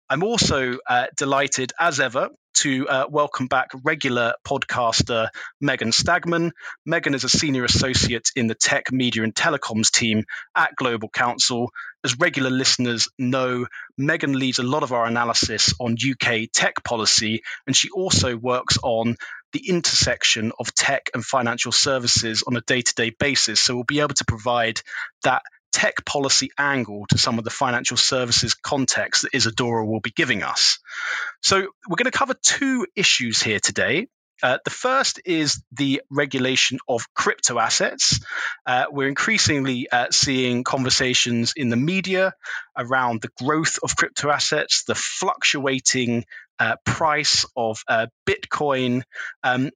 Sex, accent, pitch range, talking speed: male, British, 120-140 Hz, 150 wpm